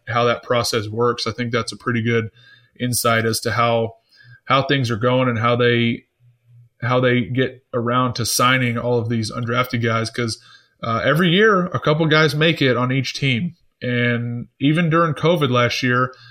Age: 20-39